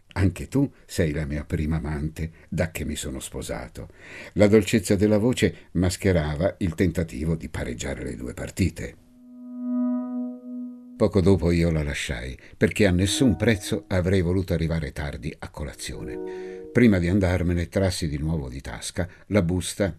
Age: 60-79